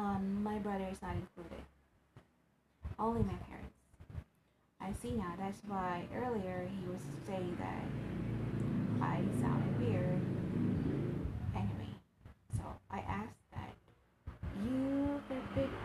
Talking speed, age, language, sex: 110 wpm, 30-49, English, female